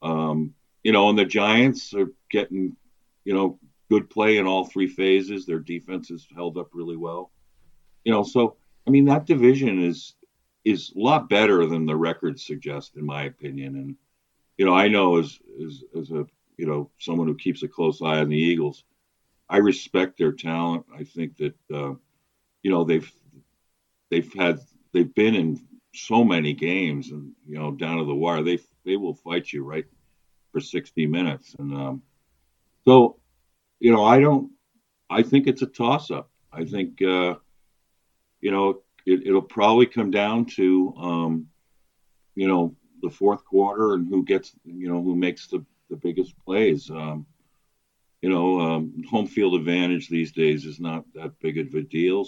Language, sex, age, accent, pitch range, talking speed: English, male, 50-69, American, 80-100 Hz, 175 wpm